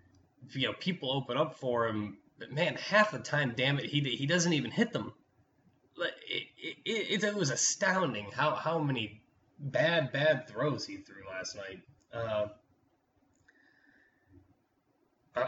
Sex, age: male, 20-39